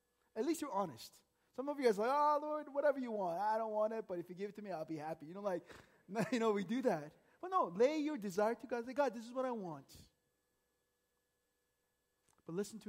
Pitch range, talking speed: 160-230 Hz, 250 wpm